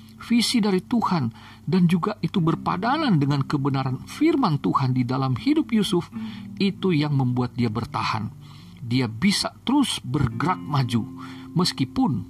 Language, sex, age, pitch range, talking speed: Indonesian, male, 50-69, 115-175 Hz, 125 wpm